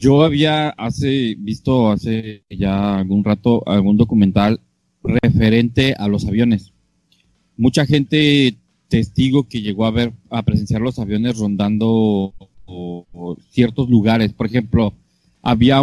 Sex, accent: male, Mexican